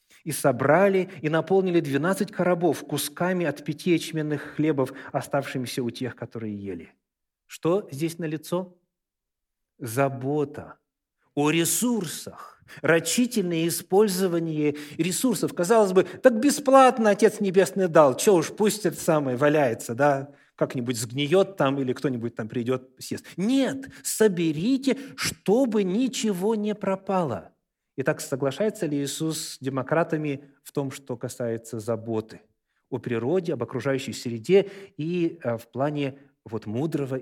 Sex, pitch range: male, 130-185 Hz